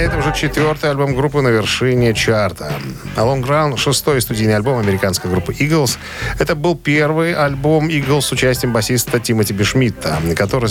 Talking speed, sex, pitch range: 150 wpm, male, 105-140 Hz